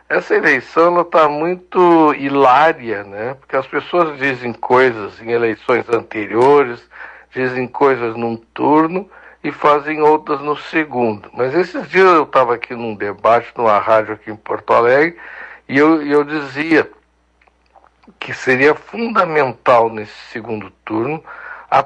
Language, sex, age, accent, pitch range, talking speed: Portuguese, male, 60-79, Brazilian, 120-155 Hz, 130 wpm